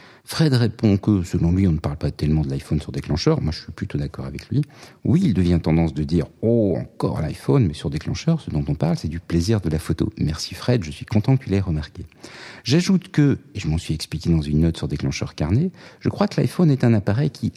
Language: French